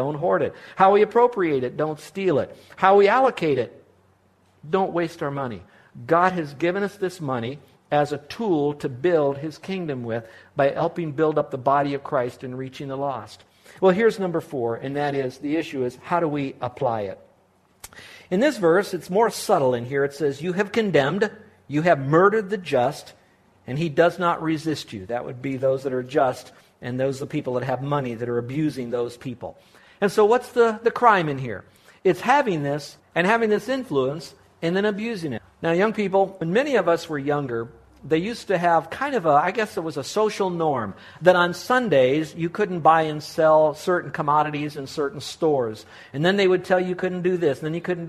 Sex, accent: male, American